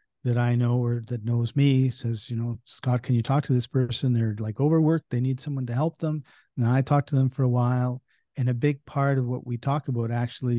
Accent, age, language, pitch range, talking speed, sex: American, 50-69, English, 120-135 Hz, 250 wpm, male